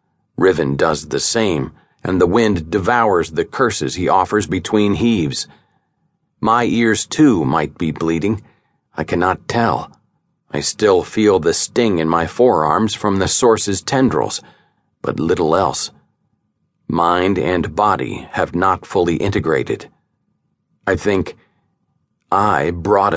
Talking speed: 125 wpm